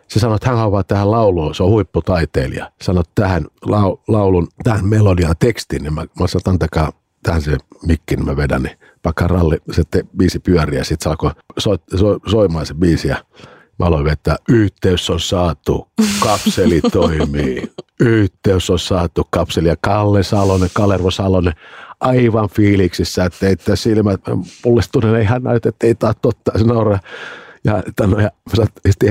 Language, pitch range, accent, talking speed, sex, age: Finnish, 85-105 Hz, native, 160 wpm, male, 50-69